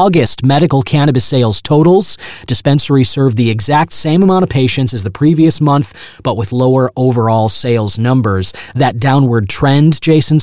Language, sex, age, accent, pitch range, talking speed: English, male, 30-49, American, 115-155 Hz, 155 wpm